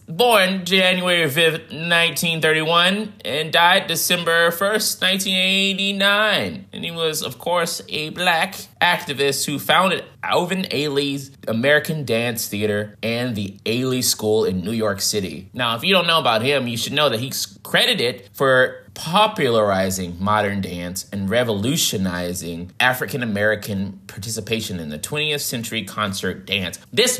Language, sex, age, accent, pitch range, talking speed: English, male, 20-39, American, 100-150 Hz, 130 wpm